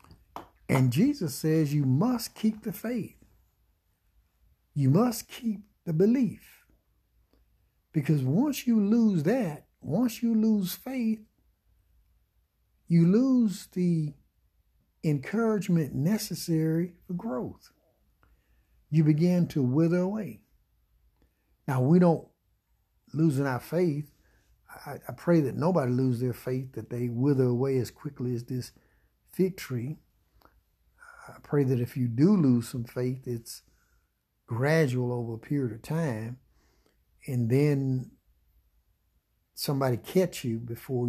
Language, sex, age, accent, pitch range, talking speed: English, male, 60-79, American, 115-170 Hz, 120 wpm